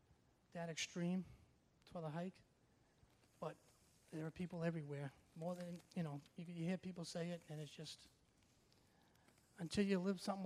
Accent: American